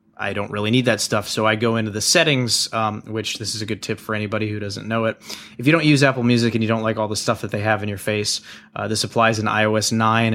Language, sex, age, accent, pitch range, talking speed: English, male, 30-49, American, 105-120 Hz, 290 wpm